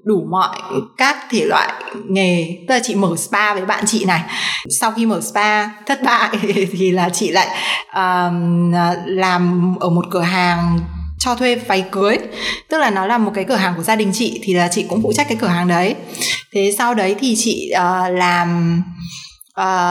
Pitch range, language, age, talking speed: 180-220 Hz, English, 20-39, 195 wpm